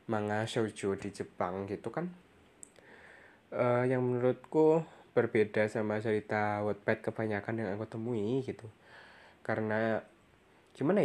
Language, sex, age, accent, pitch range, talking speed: Indonesian, male, 20-39, native, 110-135 Hz, 110 wpm